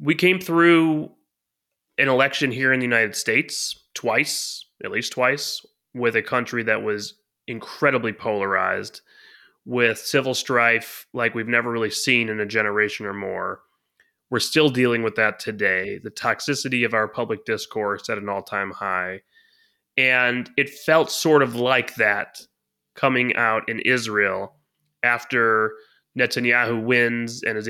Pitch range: 110-130 Hz